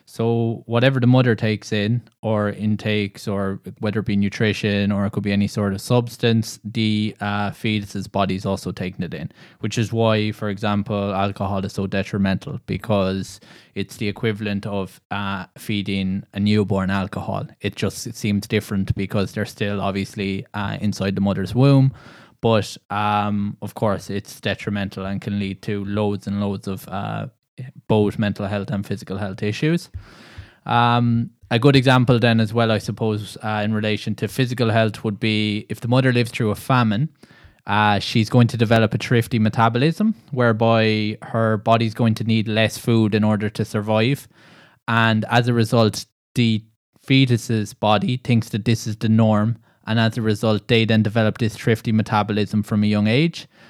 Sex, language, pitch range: male, English, 100-115 Hz